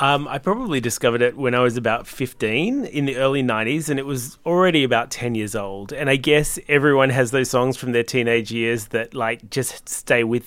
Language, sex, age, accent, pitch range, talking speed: English, male, 30-49, Australian, 115-135 Hz, 220 wpm